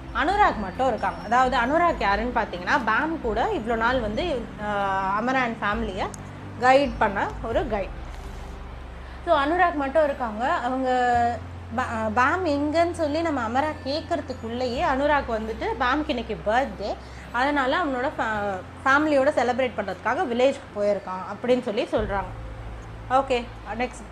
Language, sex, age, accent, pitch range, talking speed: Tamil, female, 20-39, native, 210-290 Hz, 120 wpm